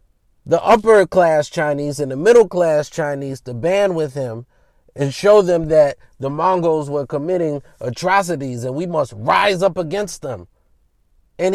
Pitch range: 130-200 Hz